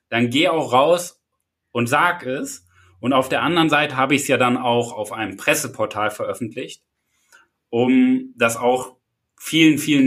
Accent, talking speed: German, 160 wpm